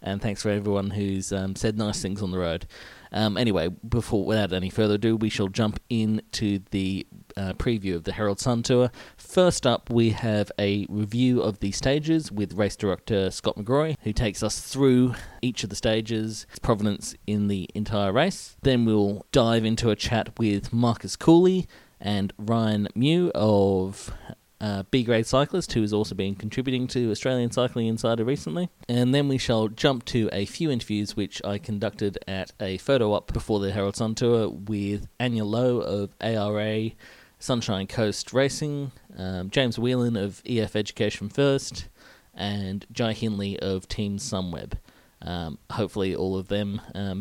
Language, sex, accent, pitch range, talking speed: English, male, Australian, 100-120 Hz, 170 wpm